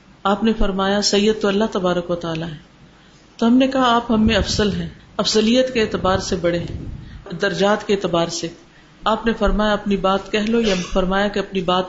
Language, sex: Urdu, female